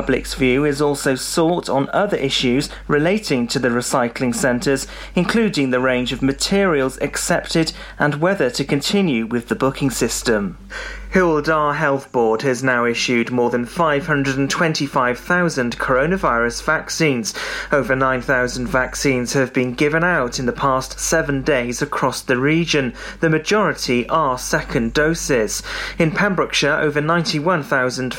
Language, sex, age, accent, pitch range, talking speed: English, male, 30-49, British, 130-160 Hz, 135 wpm